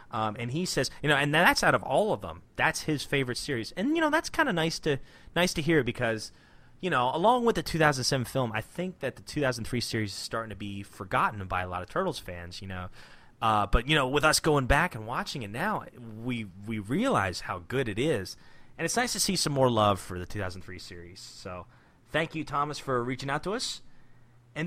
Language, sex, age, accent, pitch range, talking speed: English, male, 30-49, American, 110-155 Hz, 235 wpm